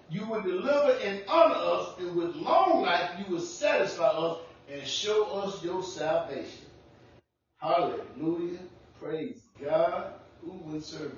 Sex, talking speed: female, 135 wpm